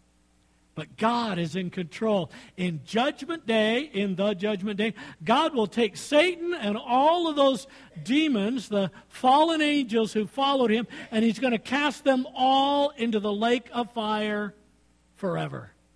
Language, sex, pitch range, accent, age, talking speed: English, male, 165-250 Hz, American, 50-69, 150 wpm